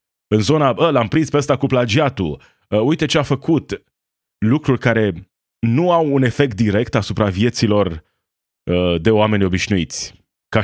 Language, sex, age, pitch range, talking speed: Romanian, male, 30-49, 100-135 Hz, 140 wpm